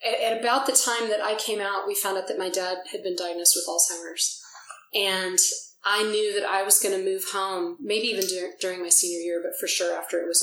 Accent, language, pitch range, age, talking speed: American, English, 180-215 Hz, 30-49, 240 wpm